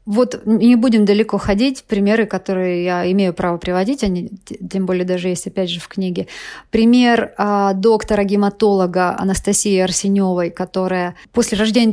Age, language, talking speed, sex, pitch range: 30-49, Russian, 140 wpm, female, 195-240 Hz